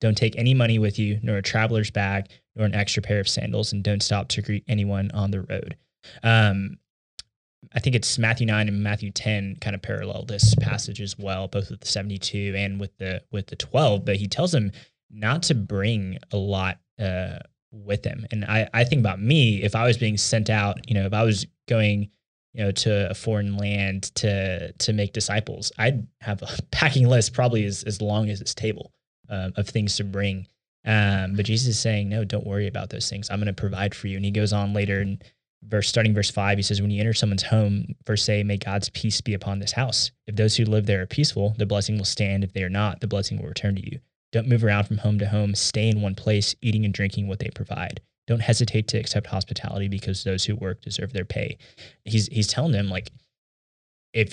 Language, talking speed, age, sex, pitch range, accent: English, 230 wpm, 10-29, male, 100-115 Hz, American